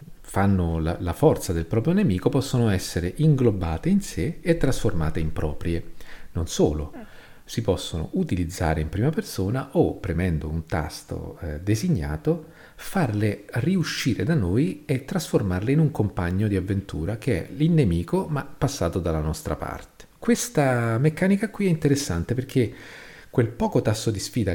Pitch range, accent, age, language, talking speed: 85-130 Hz, native, 40-59, Italian, 145 wpm